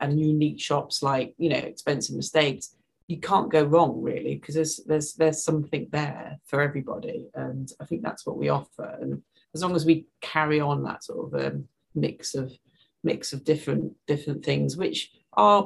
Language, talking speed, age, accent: English, 185 wpm, 40-59, British